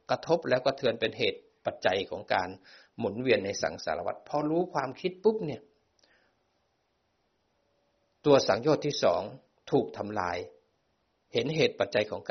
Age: 60-79